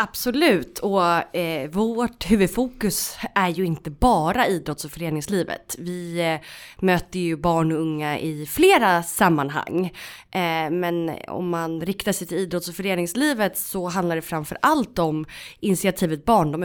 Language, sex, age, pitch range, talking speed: Swedish, female, 20-39, 165-210 Hz, 140 wpm